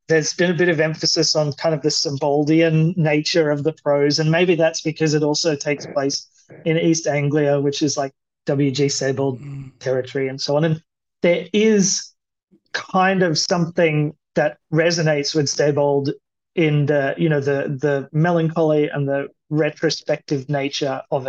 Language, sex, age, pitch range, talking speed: English, male, 30-49, 145-170 Hz, 160 wpm